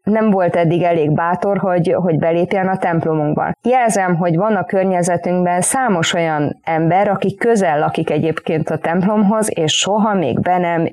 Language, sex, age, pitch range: Hungarian, female, 20-39, 170-205 Hz